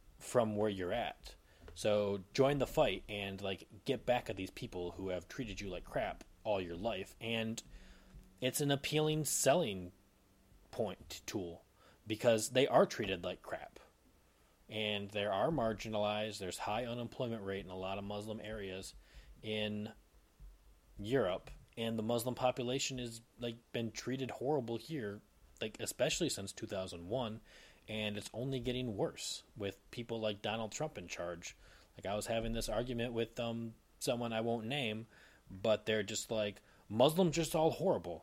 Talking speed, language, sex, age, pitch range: 160 wpm, English, male, 30-49, 100-125 Hz